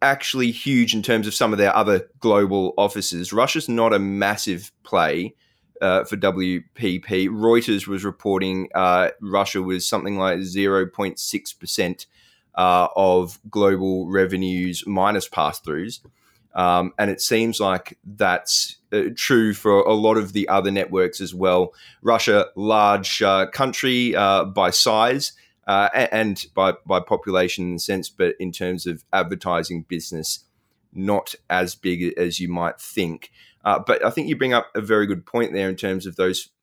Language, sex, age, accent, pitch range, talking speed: English, male, 20-39, Australian, 90-110 Hz, 150 wpm